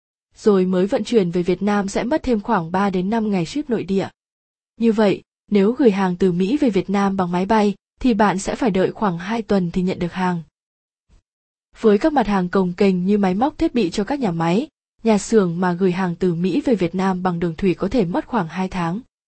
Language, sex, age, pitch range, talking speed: Vietnamese, female, 20-39, 190-230 Hz, 240 wpm